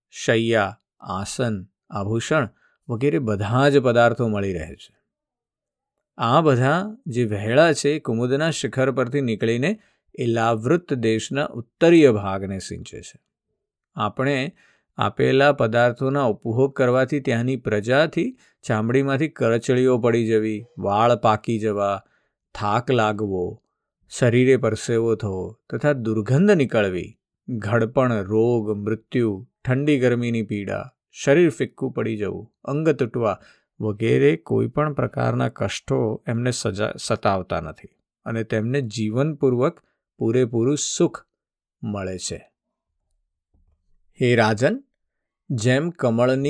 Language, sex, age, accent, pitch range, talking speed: Gujarati, male, 50-69, native, 110-135 Hz, 90 wpm